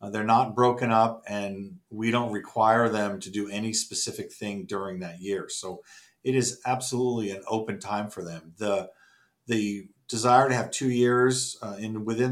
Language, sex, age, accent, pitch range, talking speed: English, male, 50-69, American, 100-120 Hz, 180 wpm